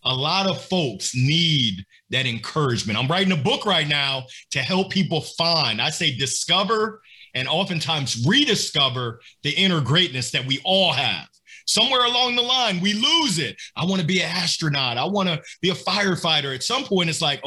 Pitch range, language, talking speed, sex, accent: 150-200 Hz, English, 185 wpm, male, American